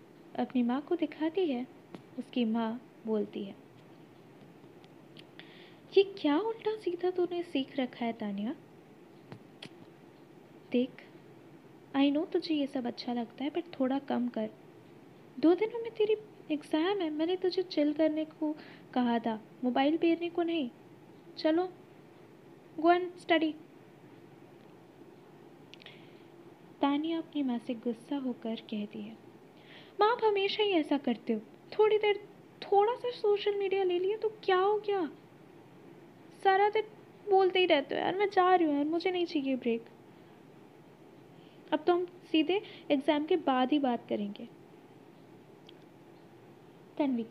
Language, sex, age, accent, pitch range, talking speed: Hindi, female, 20-39, native, 250-365 Hz, 130 wpm